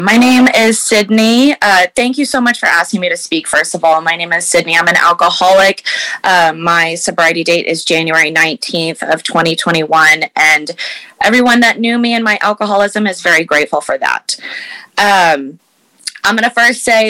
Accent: American